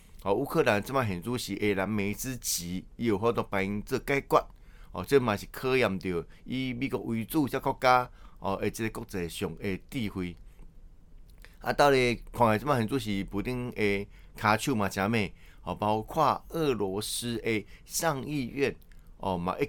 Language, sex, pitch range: Chinese, male, 95-130 Hz